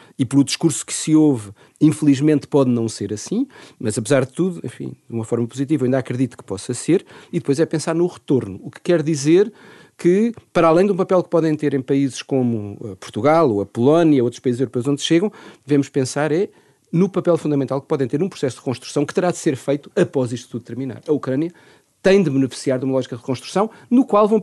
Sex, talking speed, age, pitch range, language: male, 225 wpm, 40-59, 130-175 Hz, Portuguese